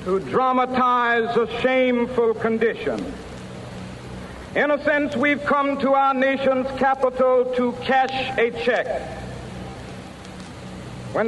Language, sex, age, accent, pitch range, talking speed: English, male, 60-79, American, 235-260 Hz, 100 wpm